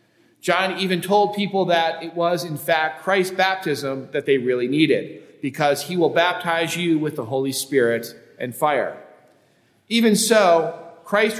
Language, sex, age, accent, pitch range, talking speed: English, male, 40-59, American, 140-180 Hz, 155 wpm